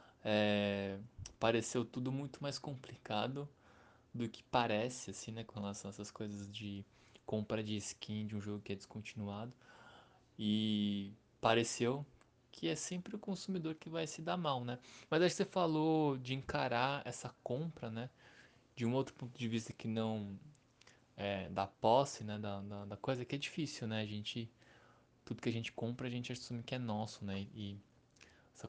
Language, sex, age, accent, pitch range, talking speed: Portuguese, male, 20-39, Brazilian, 105-130 Hz, 175 wpm